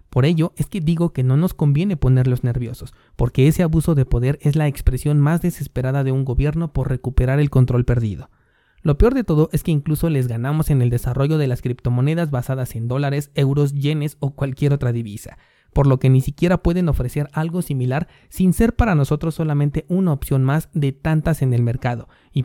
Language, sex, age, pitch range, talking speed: Spanish, male, 30-49, 125-155 Hz, 205 wpm